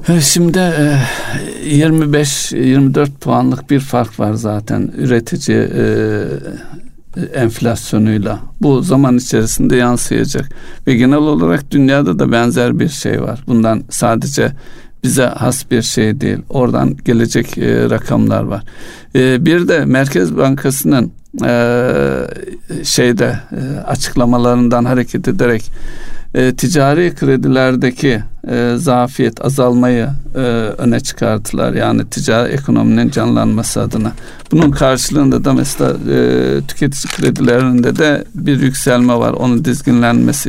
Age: 60-79